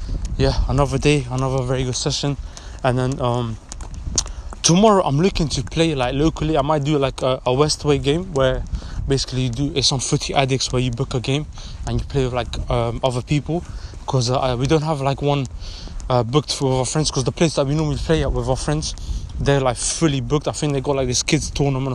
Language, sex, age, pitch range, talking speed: English, male, 20-39, 125-145 Hz, 220 wpm